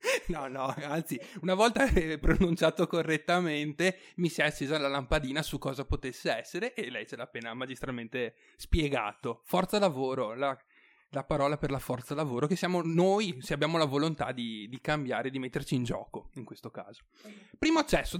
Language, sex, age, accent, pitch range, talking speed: Italian, male, 30-49, native, 135-175 Hz, 170 wpm